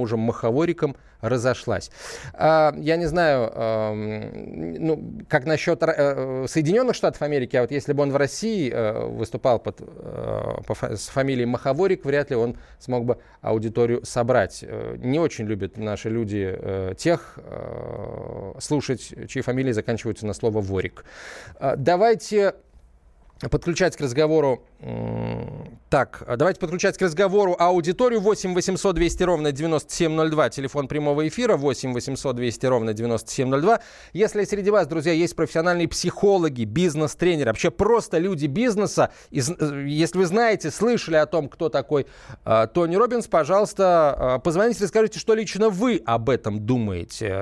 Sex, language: male, Russian